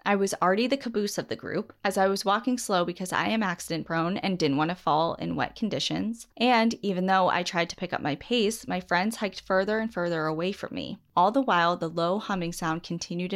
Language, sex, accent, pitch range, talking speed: English, female, American, 170-215 Hz, 240 wpm